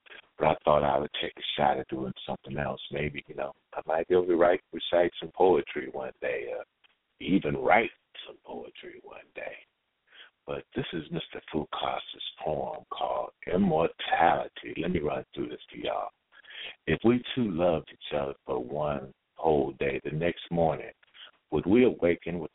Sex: male